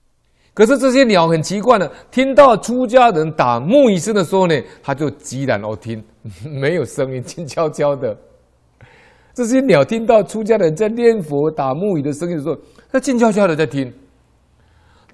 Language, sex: Chinese, male